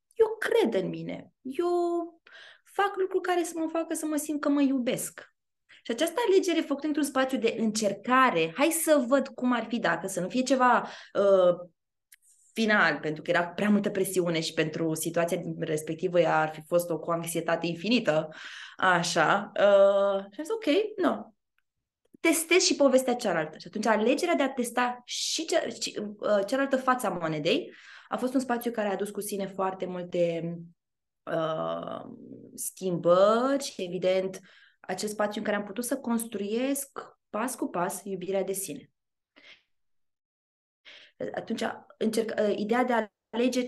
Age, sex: 20-39, female